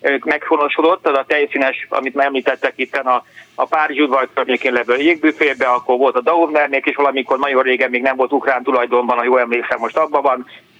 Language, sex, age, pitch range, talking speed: Hungarian, male, 30-49, 130-155 Hz, 190 wpm